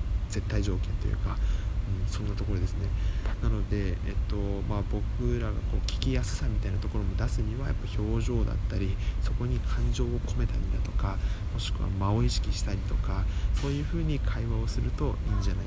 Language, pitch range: Japanese, 95-105 Hz